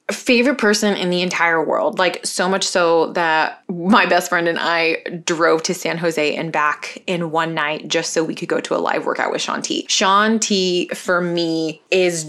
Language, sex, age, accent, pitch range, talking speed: English, female, 20-39, American, 165-195 Hz, 205 wpm